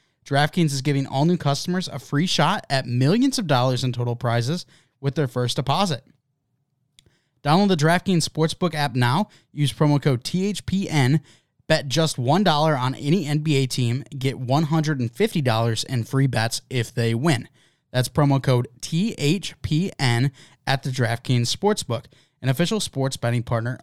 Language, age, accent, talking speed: English, 20-39, American, 145 wpm